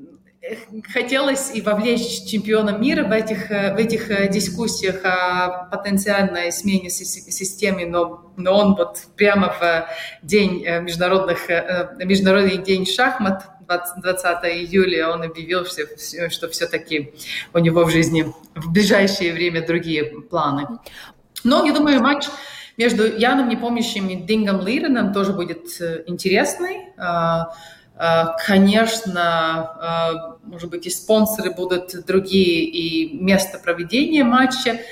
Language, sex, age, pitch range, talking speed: Russian, female, 30-49, 175-210 Hz, 110 wpm